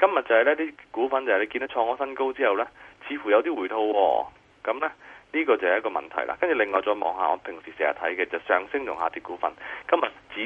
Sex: male